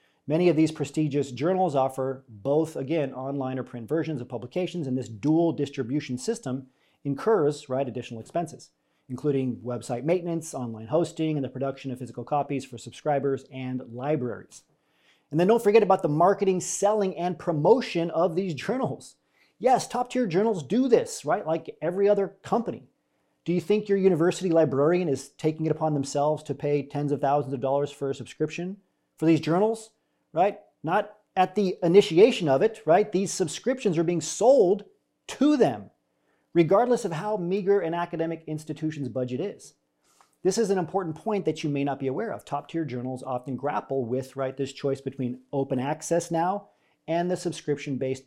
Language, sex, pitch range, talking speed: English, male, 135-175 Hz, 170 wpm